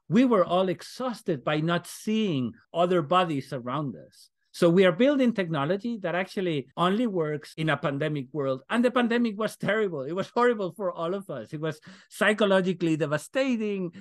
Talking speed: 170 wpm